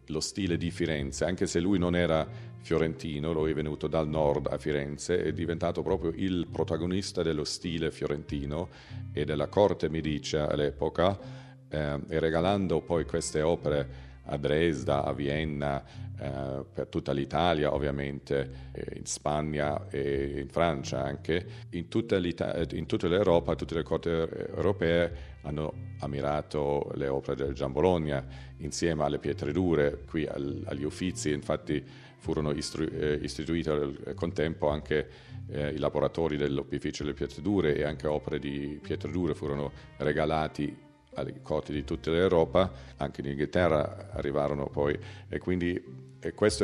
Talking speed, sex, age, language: 145 wpm, male, 40-59, Italian